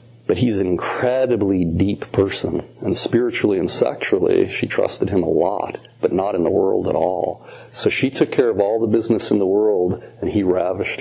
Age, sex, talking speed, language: 40-59, male, 195 wpm, English